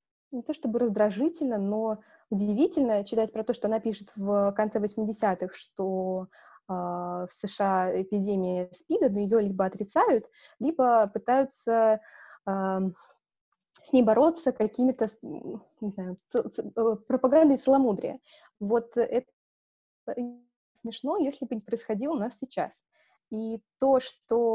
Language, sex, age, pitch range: Russian, female, 20-39, 205-255 Hz